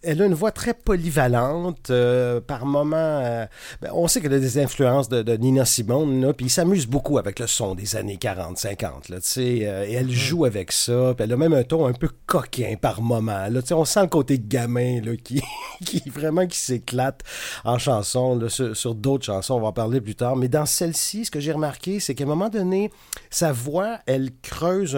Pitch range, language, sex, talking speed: 115-155 Hz, French, male, 225 wpm